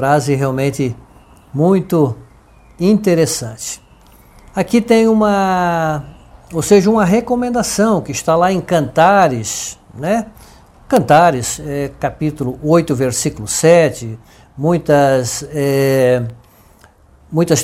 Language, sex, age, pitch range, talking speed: English, male, 60-79, 130-175 Hz, 90 wpm